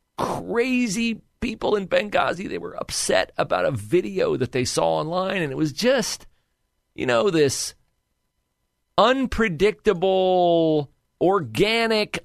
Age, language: 40-59, English